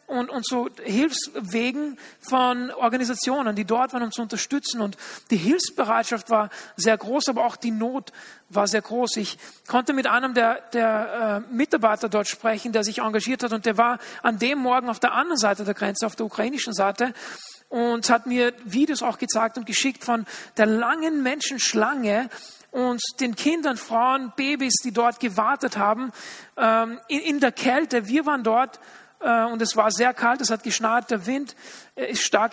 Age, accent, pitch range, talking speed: 40-59, German, 215-250 Hz, 175 wpm